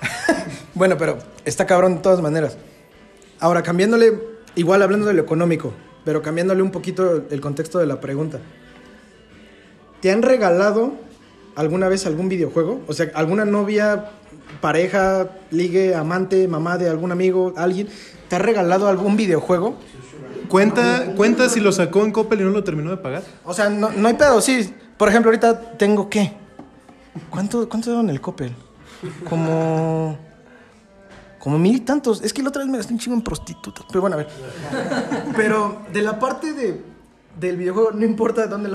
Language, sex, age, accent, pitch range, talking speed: Spanish, male, 30-49, Mexican, 165-215 Hz, 170 wpm